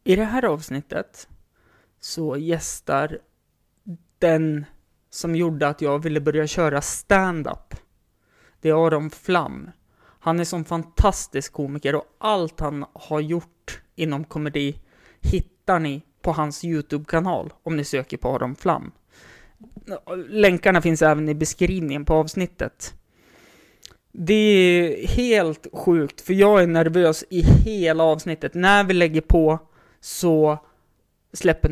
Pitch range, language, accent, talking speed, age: 150-185 Hz, Swedish, native, 125 wpm, 20-39